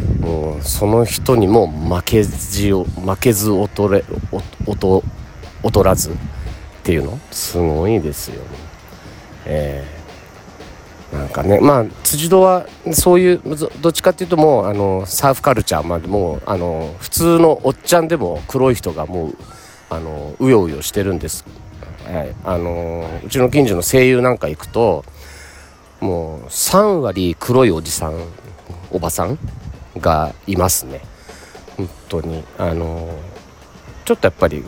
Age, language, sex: 40-59, Japanese, male